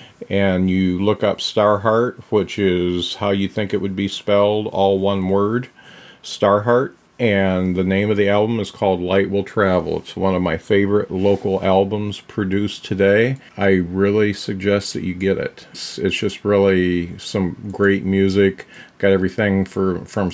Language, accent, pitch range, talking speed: English, American, 95-105 Hz, 160 wpm